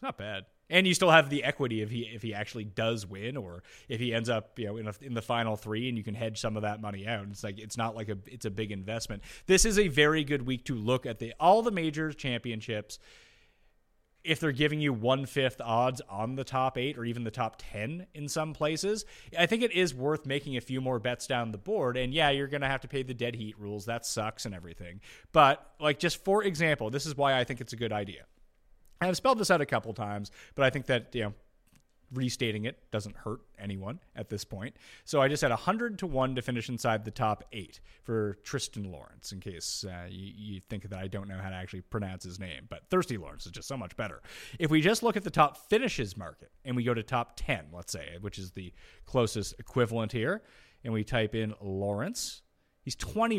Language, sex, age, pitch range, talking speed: English, male, 30-49, 105-140 Hz, 240 wpm